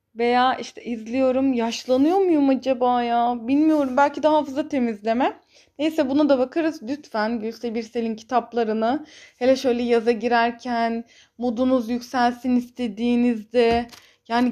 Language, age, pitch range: Turkish, 20-39, 220-270 Hz